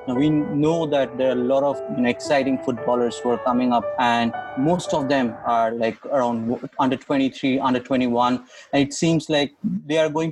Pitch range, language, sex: 120-145 Hz, English, male